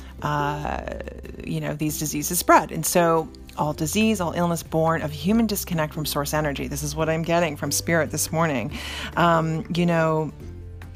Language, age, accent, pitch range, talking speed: English, 40-59, American, 150-190 Hz, 170 wpm